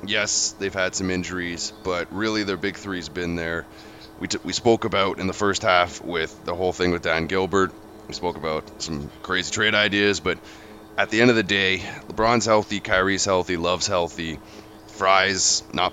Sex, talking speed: male, 190 wpm